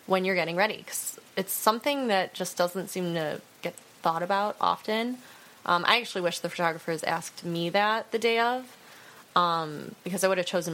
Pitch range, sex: 170-195 Hz, female